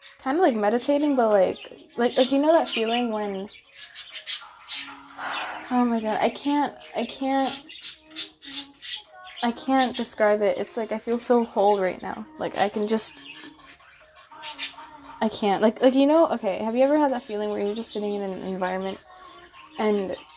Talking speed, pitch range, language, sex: 170 wpm, 200-270 Hz, English, female